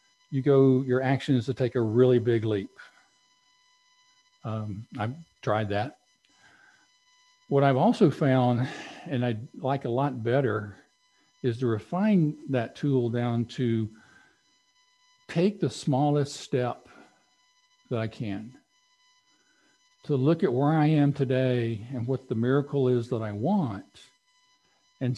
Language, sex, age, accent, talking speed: English, male, 60-79, American, 130 wpm